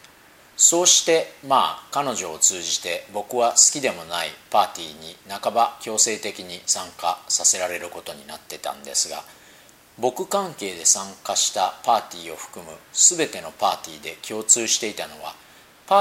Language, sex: Japanese, male